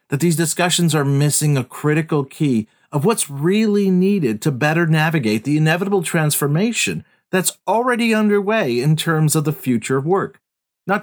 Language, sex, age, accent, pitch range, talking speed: English, male, 40-59, American, 135-190 Hz, 160 wpm